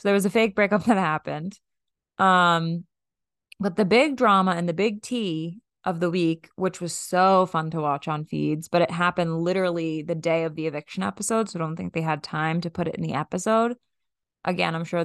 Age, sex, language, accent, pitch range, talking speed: 20-39, female, English, American, 160-195 Hz, 215 wpm